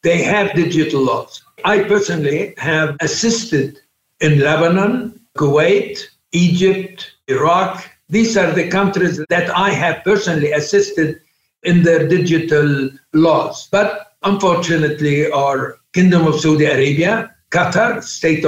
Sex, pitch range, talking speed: male, 155-195 Hz, 115 wpm